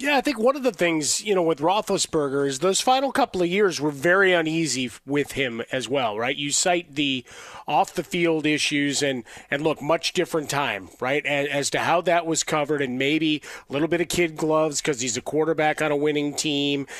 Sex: male